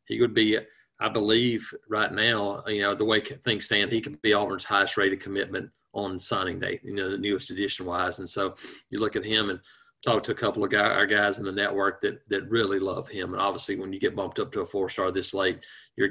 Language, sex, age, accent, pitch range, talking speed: English, male, 30-49, American, 100-115 Hz, 245 wpm